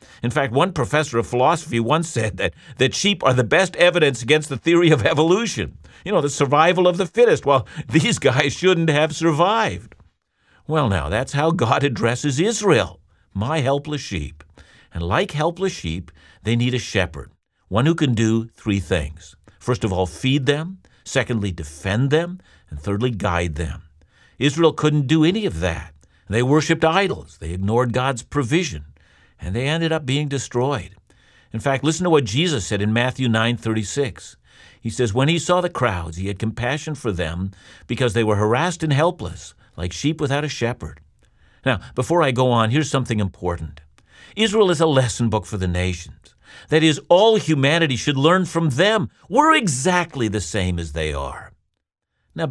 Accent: American